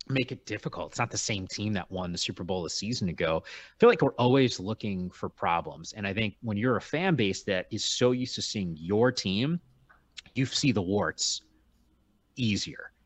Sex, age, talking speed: male, 30-49, 205 wpm